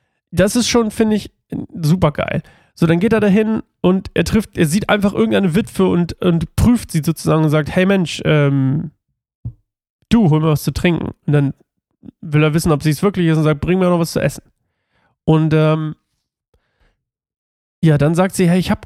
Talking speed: 200 wpm